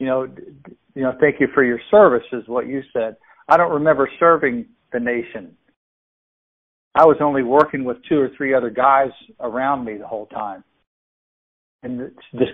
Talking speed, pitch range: 170 wpm, 115-140 Hz